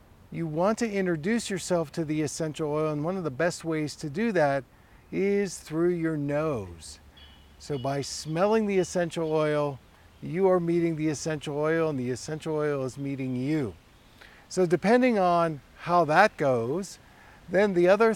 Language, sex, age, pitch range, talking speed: English, male, 50-69, 130-170 Hz, 165 wpm